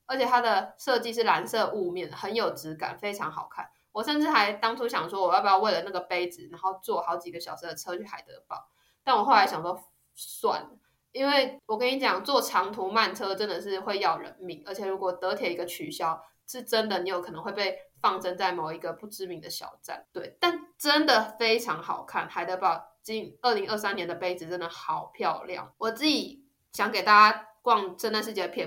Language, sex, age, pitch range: Chinese, female, 20-39, 185-250 Hz